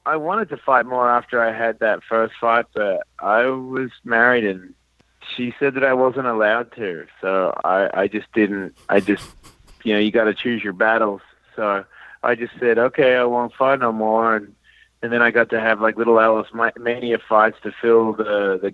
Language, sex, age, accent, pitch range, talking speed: English, male, 30-49, American, 105-120 Hz, 205 wpm